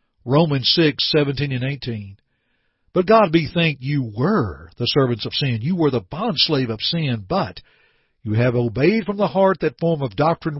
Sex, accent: male, American